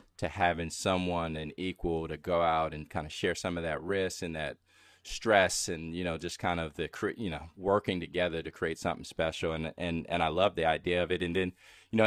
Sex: male